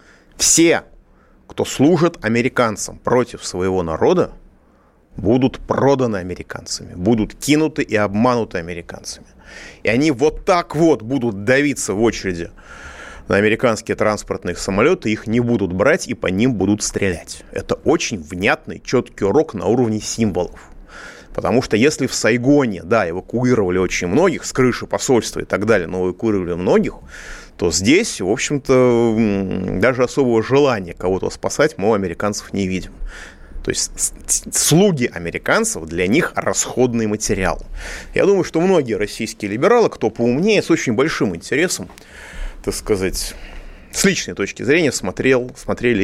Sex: male